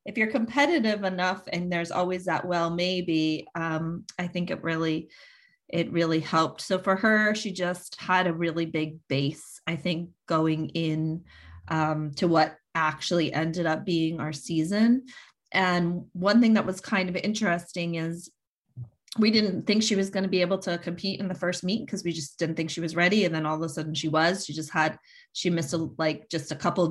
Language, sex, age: English, female, 30-49